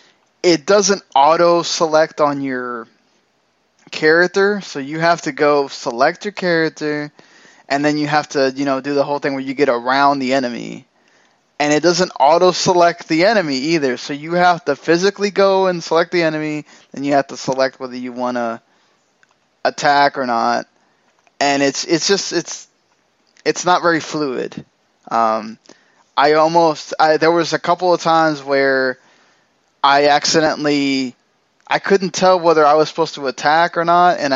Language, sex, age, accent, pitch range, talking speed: English, male, 10-29, American, 135-165 Hz, 170 wpm